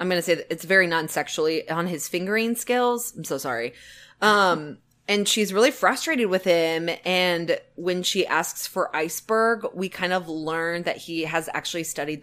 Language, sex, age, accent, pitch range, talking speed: English, female, 20-39, American, 150-195 Hz, 180 wpm